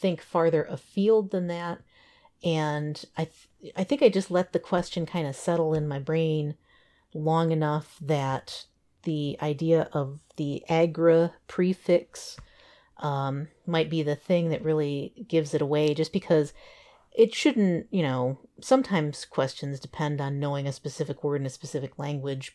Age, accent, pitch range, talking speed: 40-59, American, 150-180 Hz, 155 wpm